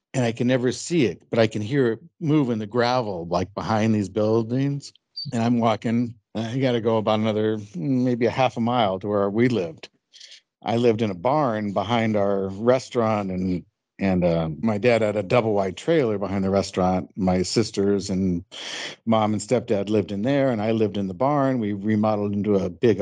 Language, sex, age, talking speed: English, male, 60-79, 205 wpm